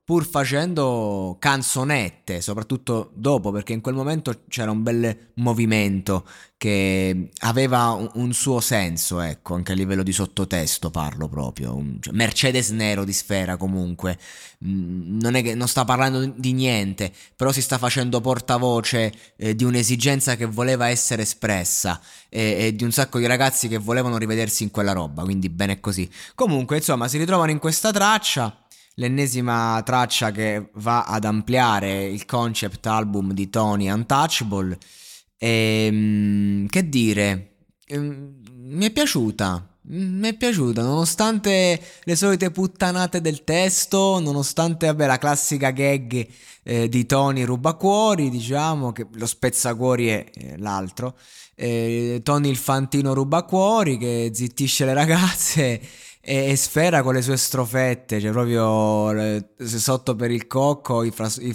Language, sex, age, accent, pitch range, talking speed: Italian, male, 20-39, native, 105-140 Hz, 135 wpm